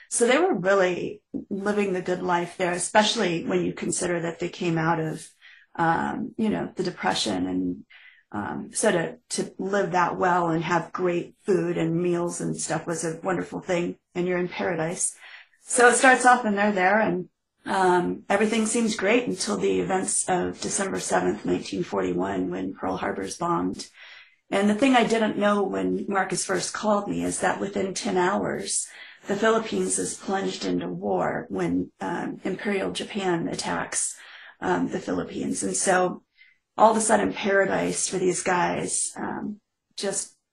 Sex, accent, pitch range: female, American, 170-200 Hz